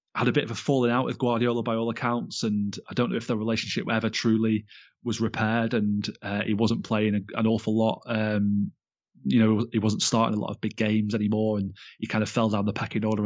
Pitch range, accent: 110-120 Hz, British